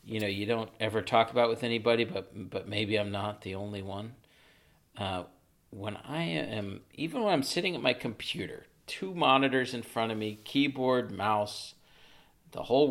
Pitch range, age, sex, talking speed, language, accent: 95-120 Hz, 40-59, male, 180 wpm, English, American